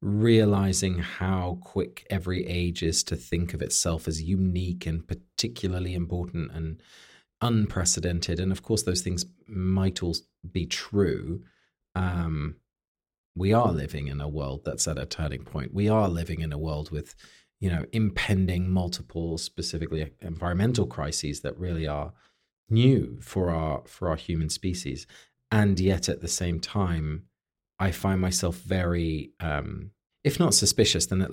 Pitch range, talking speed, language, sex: 80-100 Hz, 150 wpm, English, male